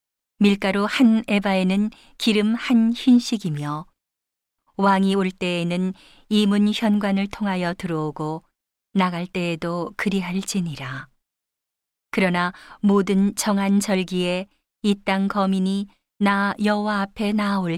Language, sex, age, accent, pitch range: Korean, female, 40-59, native, 175-205 Hz